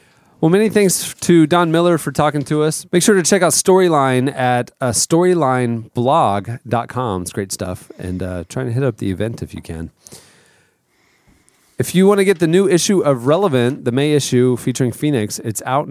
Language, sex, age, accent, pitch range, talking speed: English, male, 30-49, American, 110-140 Hz, 190 wpm